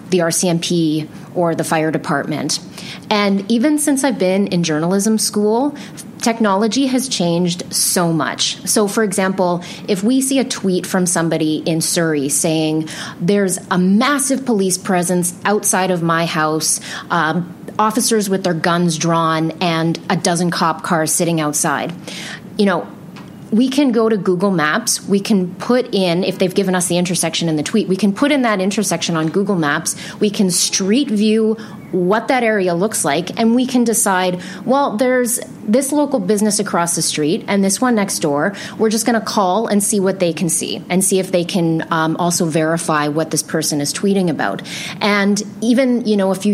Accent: American